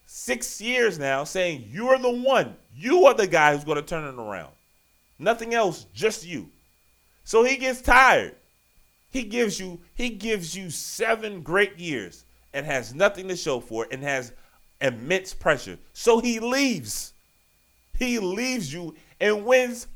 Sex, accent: male, American